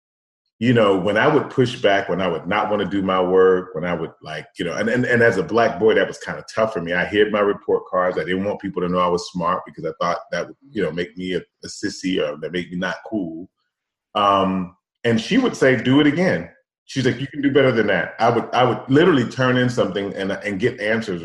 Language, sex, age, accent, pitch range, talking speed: English, male, 30-49, American, 90-115 Hz, 270 wpm